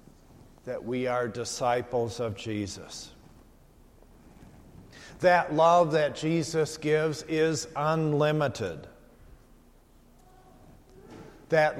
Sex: male